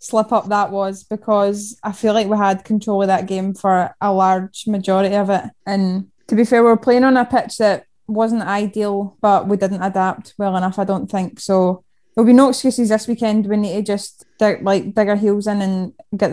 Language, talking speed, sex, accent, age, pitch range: English, 215 wpm, female, British, 10-29, 195-215 Hz